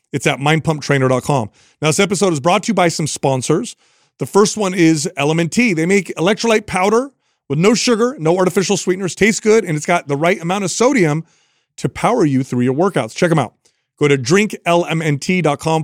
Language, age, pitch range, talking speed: English, 30-49, 145-195 Hz, 190 wpm